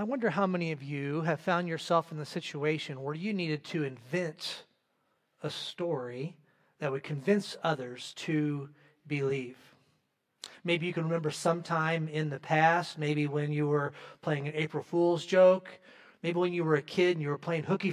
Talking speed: 175 wpm